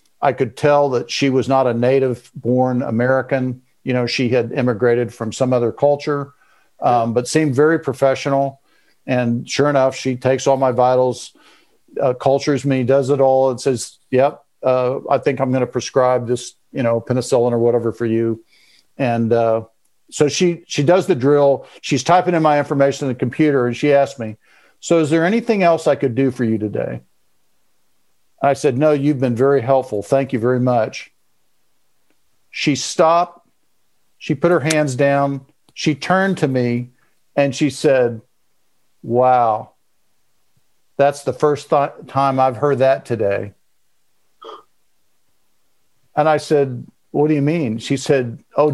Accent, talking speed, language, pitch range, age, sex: American, 165 wpm, English, 125-145 Hz, 50-69, male